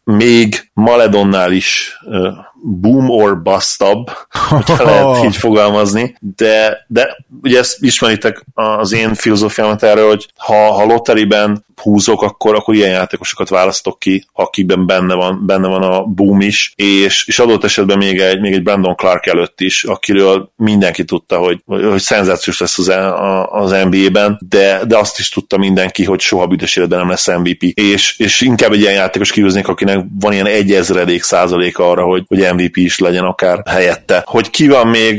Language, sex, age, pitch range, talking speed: Hungarian, male, 30-49, 95-105 Hz, 165 wpm